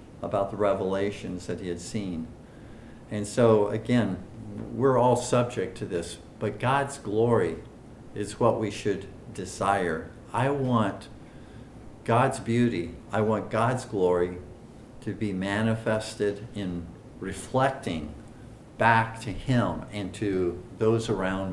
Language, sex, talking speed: English, male, 120 wpm